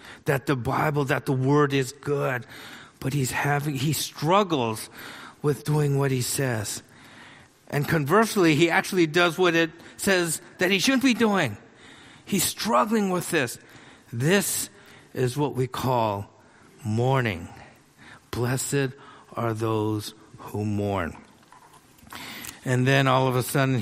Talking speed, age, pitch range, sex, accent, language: 130 wpm, 50-69, 125-155 Hz, male, American, English